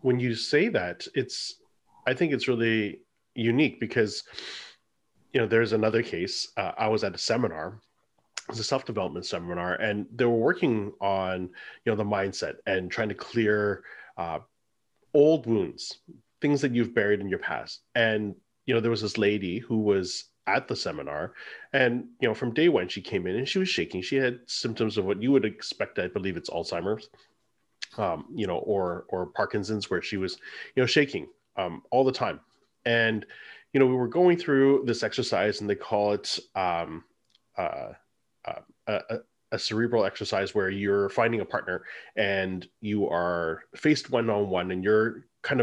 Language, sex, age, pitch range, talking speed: English, male, 30-49, 100-120 Hz, 180 wpm